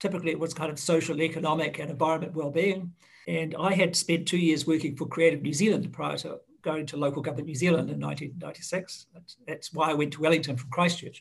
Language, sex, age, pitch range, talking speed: English, male, 60-79, 155-185 Hz, 210 wpm